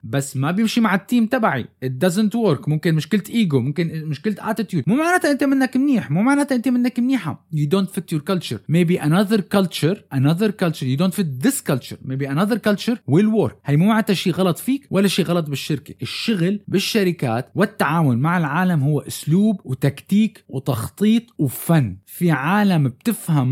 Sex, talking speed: male, 175 wpm